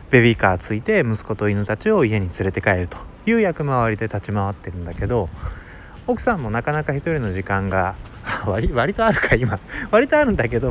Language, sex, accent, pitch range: Japanese, male, native, 95-150 Hz